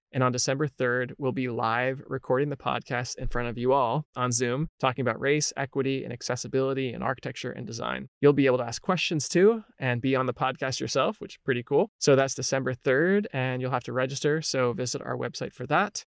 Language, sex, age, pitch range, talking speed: English, male, 20-39, 125-145 Hz, 220 wpm